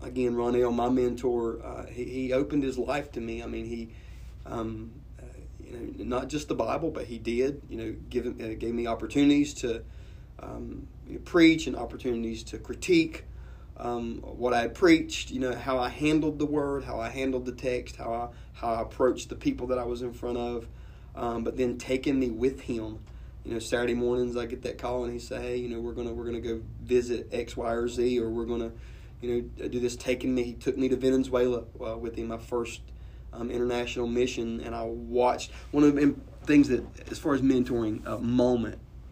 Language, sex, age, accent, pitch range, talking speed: English, male, 20-39, American, 115-125 Hz, 215 wpm